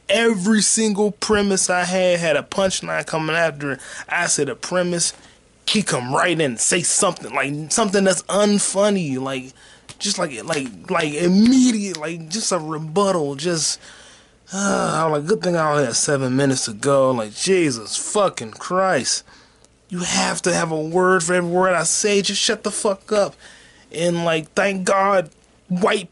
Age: 20-39